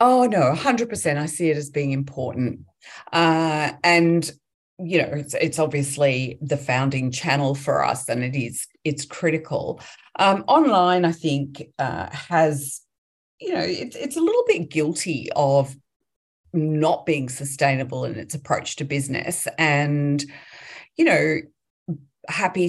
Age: 40-59